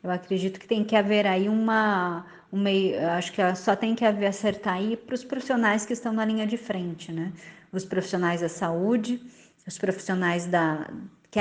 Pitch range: 185-225 Hz